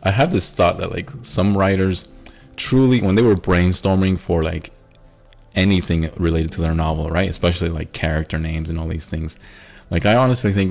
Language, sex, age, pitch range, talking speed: English, male, 30-49, 80-115 Hz, 185 wpm